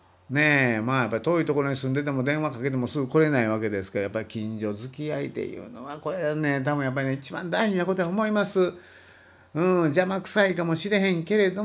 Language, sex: Japanese, male